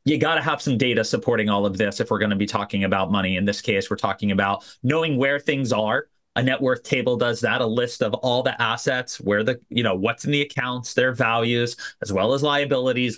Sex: male